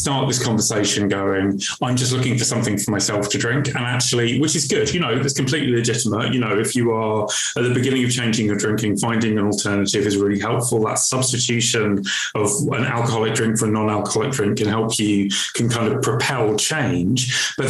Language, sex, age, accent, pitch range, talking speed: English, male, 20-39, British, 105-130 Hz, 205 wpm